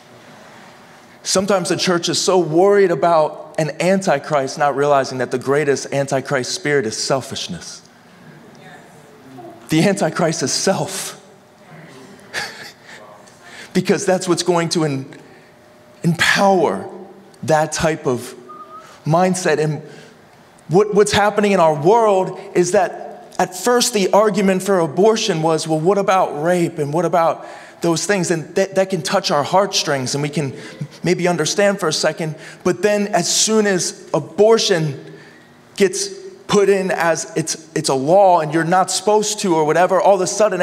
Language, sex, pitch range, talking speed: English, male, 160-200 Hz, 140 wpm